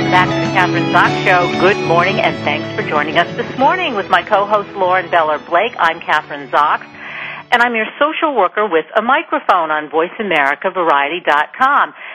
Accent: American